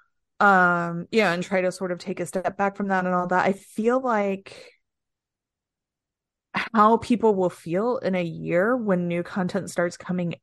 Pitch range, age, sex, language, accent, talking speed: 160-210 Hz, 30-49, female, English, American, 180 wpm